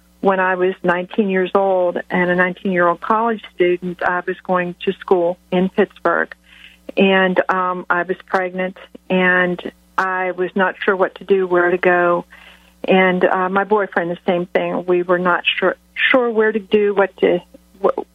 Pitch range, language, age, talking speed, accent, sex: 175-190 Hz, English, 50-69, 170 wpm, American, female